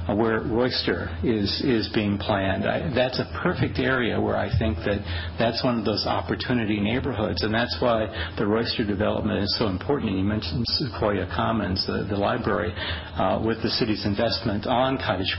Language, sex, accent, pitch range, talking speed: English, male, American, 90-115 Hz, 170 wpm